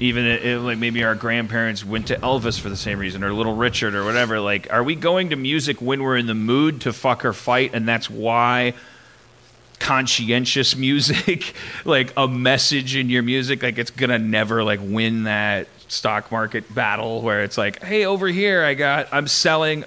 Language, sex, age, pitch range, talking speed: English, male, 30-49, 110-135 Hz, 190 wpm